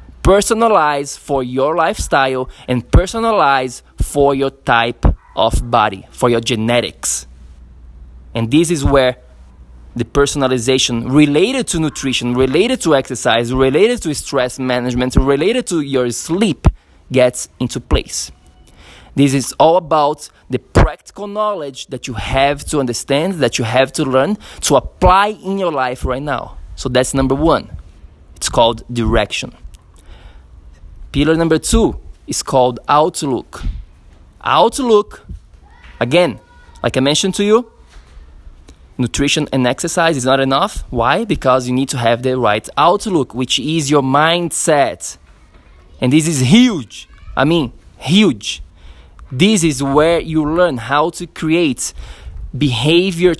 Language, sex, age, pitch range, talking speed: English, male, 20-39, 105-155 Hz, 130 wpm